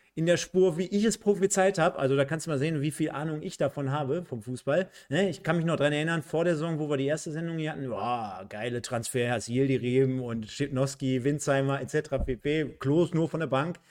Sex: male